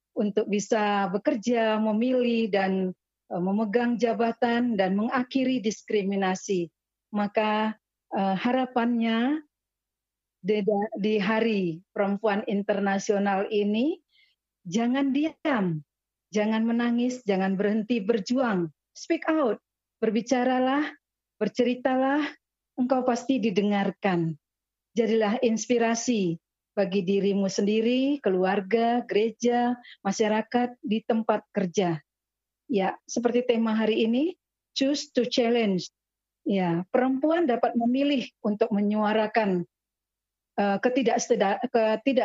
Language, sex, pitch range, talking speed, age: Indonesian, female, 200-245 Hz, 85 wpm, 40-59